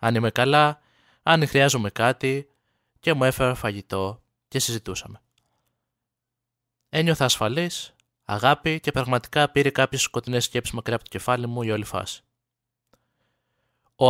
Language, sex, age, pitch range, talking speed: Greek, male, 20-39, 115-145 Hz, 130 wpm